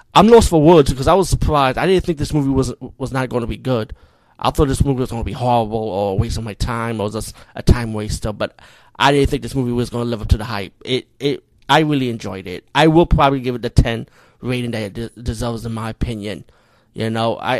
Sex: male